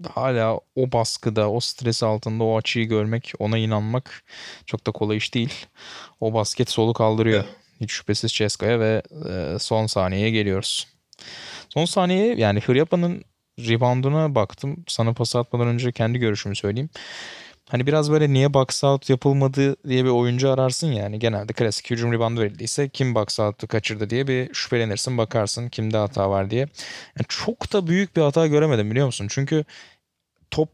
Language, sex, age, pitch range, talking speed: Turkish, male, 20-39, 110-145 Hz, 160 wpm